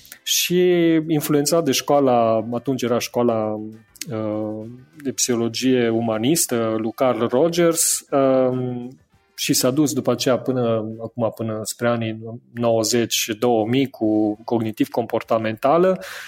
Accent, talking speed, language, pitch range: native, 100 wpm, Romanian, 115-155 Hz